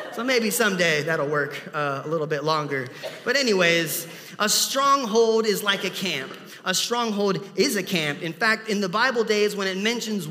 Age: 30-49